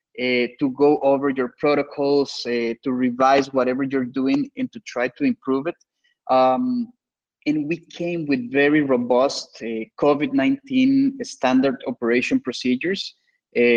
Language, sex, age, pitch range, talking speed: English, male, 30-49, 130-190 Hz, 135 wpm